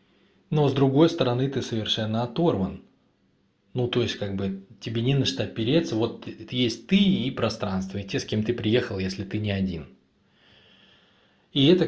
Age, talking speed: 20-39, 170 wpm